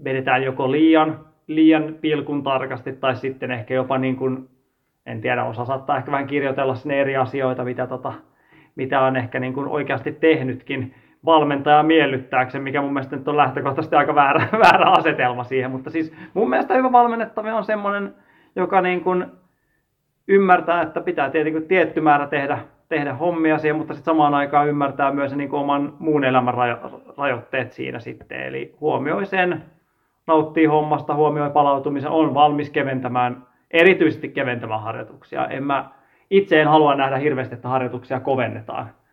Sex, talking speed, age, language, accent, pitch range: male, 150 wpm, 30-49, Finnish, native, 125-150 Hz